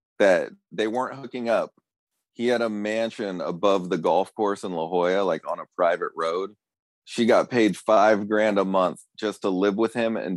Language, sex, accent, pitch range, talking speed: English, male, American, 85-100 Hz, 195 wpm